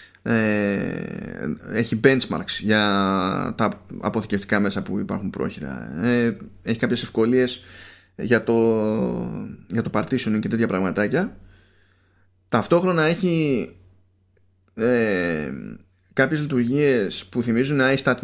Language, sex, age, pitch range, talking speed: Greek, male, 20-39, 95-125 Hz, 100 wpm